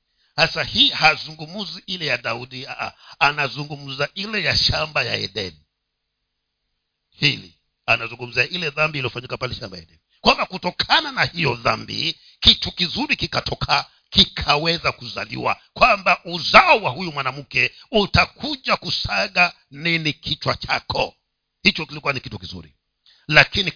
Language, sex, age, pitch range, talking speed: Swahili, male, 50-69, 120-180 Hz, 120 wpm